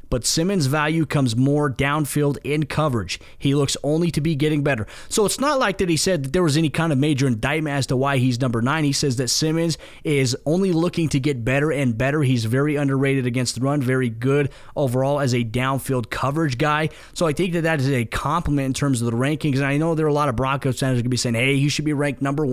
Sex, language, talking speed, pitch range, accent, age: male, English, 255 wpm, 130-155 Hz, American, 20-39